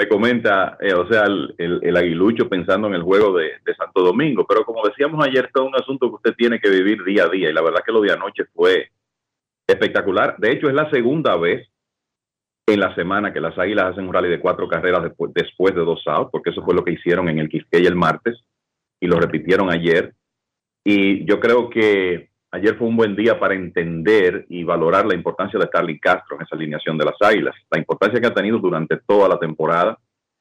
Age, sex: 40-59, male